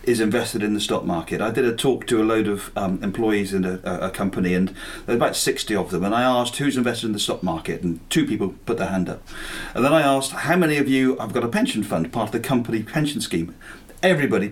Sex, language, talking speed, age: male, English, 260 wpm, 40-59